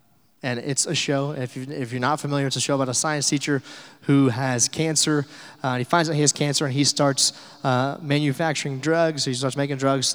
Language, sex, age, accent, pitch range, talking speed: English, male, 20-39, American, 120-145 Hz, 215 wpm